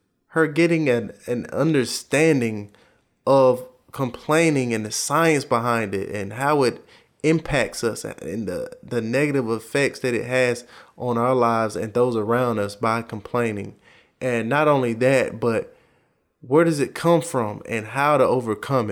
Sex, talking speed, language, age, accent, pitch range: male, 150 wpm, English, 20-39, American, 115-135 Hz